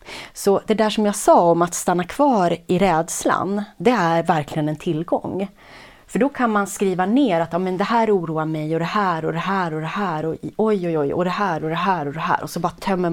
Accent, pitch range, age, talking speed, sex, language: native, 160-215 Hz, 30-49, 255 wpm, female, Swedish